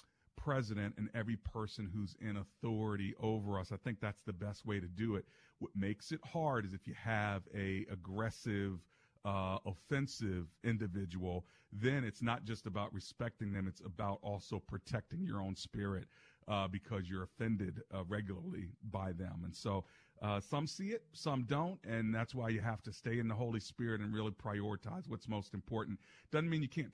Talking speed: 185 wpm